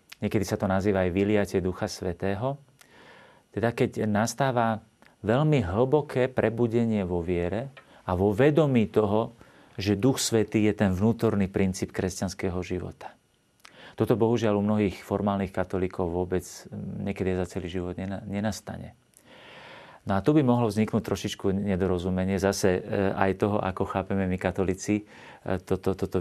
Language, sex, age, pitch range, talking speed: Slovak, male, 40-59, 95-110 Hz, 135 wpm